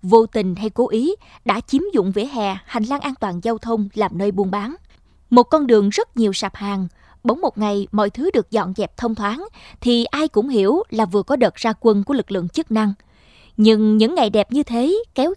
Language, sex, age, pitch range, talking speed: Vietnamese, female, 20-39, 205-250 Hz, 230 wpm